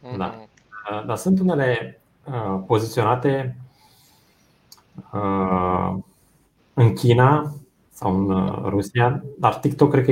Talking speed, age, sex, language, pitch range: 95 wpm, 30-49, male, Romanian, 100-145 Hz